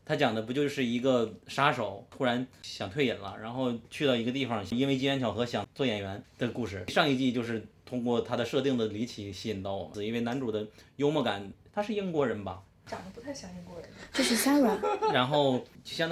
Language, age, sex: Chinese, 20-39, male